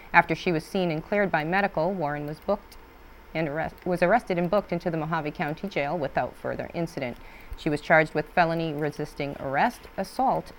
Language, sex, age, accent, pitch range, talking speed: English, female, 30-49, American, 160-205 Hz, 185 wpm